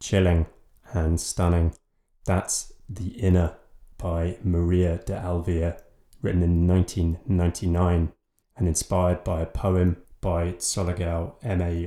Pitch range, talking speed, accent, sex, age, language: 85-95 Hz, 105 wpm, British, male, 20-39, English